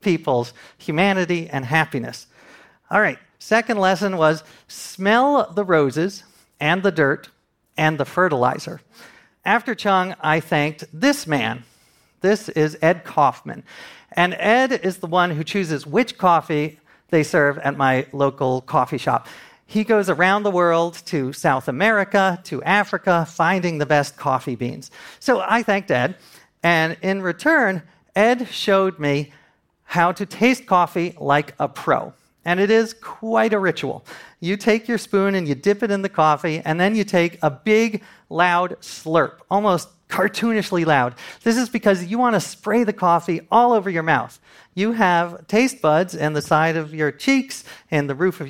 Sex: male